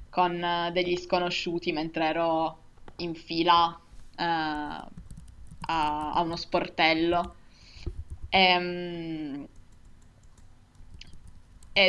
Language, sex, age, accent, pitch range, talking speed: Italian, female, 20-39, native, 170-190 Hz, 70 wpm